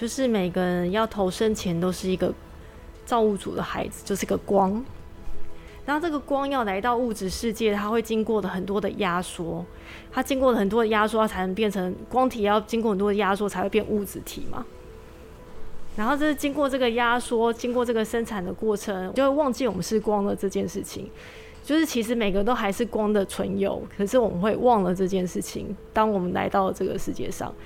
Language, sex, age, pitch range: Chinese, female, 20-39, 200-245 Hz